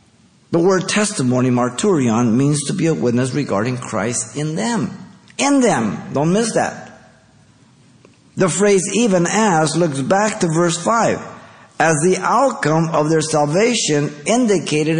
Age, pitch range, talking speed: 50-69, 110-155 Hz, 135 wpm